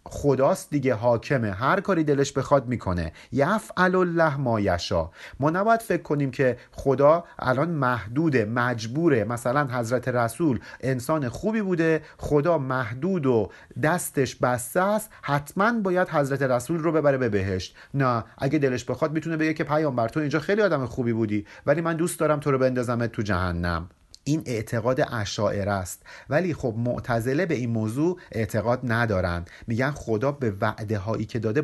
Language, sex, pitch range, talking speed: Persian, male, 115-155 Hz, 155 wpm